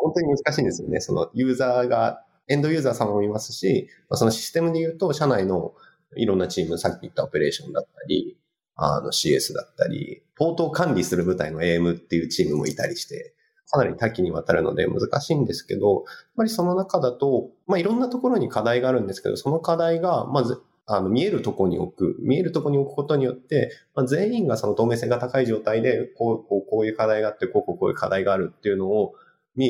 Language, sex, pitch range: Japanese, male, 115-190 Hz